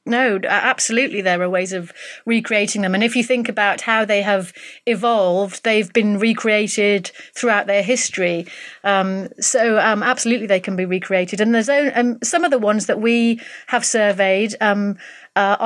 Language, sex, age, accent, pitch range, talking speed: English, female, 30-49, British, 185-225 Hz, 175 wpm